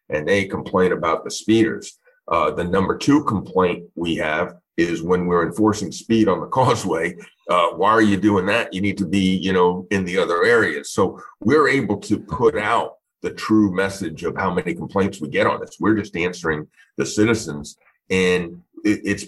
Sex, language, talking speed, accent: male, English, 195 wpm, American